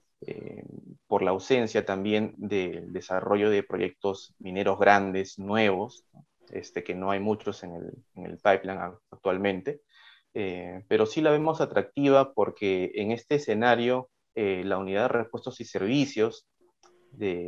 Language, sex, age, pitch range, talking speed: Spanish, male, 30-49, 95-115 Hz, 135 wpm